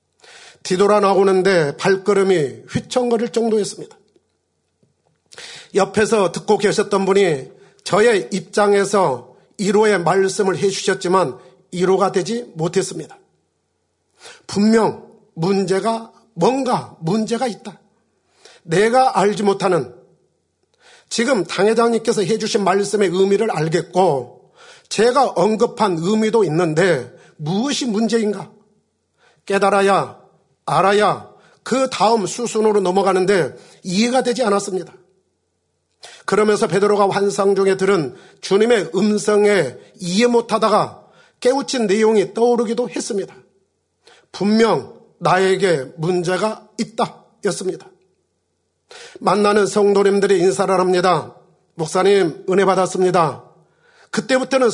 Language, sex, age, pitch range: Korean, male, 40-59, 190-225 Hz